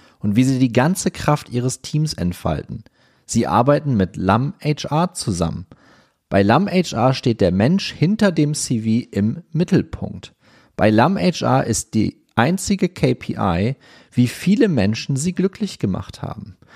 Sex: male